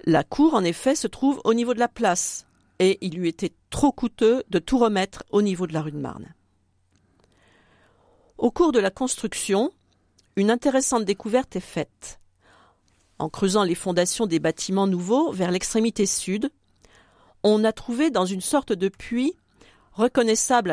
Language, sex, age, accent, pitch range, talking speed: French, female, 50-69, French, 160-235 Hz, 160 wpm